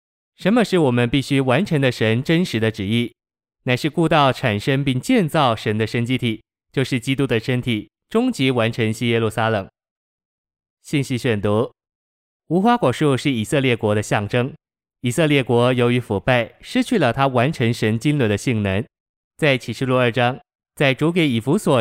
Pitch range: 115-145 Hz